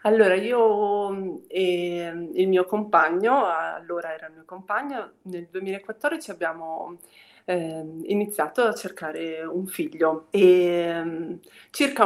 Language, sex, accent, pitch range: Italian, female, native, 175-220 Hz